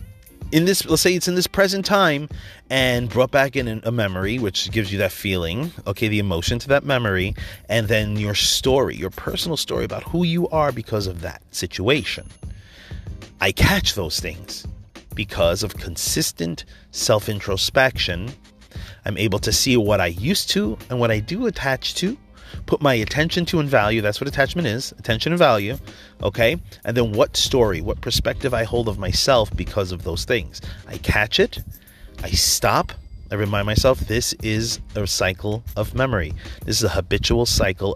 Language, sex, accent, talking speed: English, male, American, 175 wpm